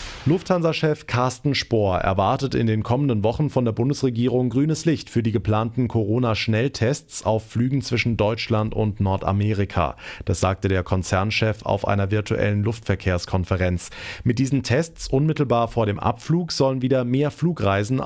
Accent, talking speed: German, 140 wpm